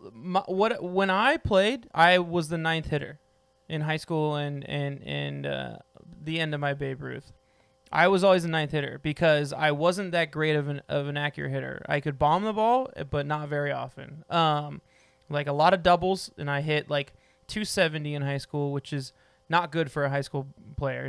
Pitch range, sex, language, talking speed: 135-160 Hz, male, English, 205 wpm